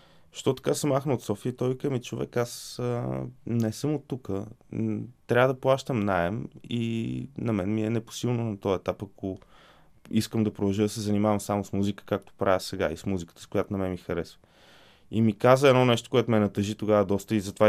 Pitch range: 105-125 Hz